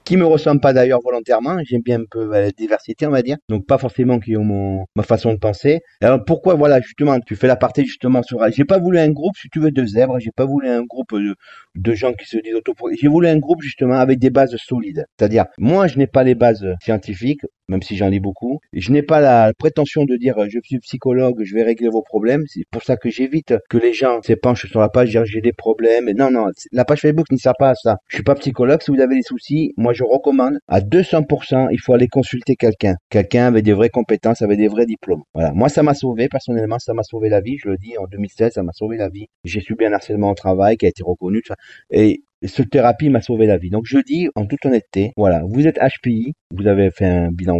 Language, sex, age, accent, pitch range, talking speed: French, male, 40-59, French, 110-135 Hz, 255 wpm